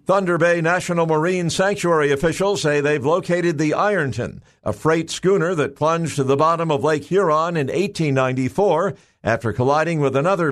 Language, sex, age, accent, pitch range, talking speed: English, male, 50-69, American, 130-170 Hz, 160 wpm